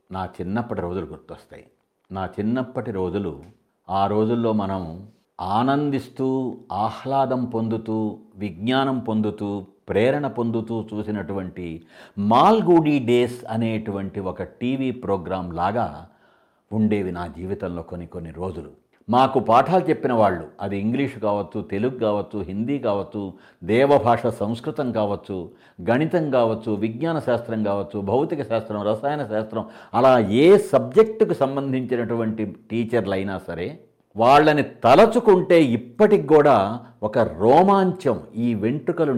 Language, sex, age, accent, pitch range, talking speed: Telugu, male, 50-69, native, 100-125 Hz, 105 wpm